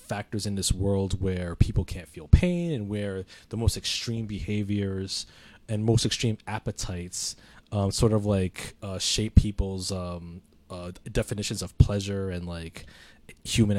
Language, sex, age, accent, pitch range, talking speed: English, male, 20-39, American, 95-125 Hz, 150 wpm